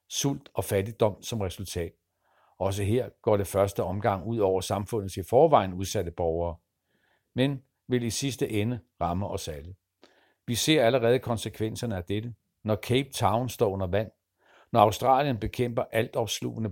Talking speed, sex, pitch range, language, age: 150 wpm, male, 90-115 Hz, Danish, 60-79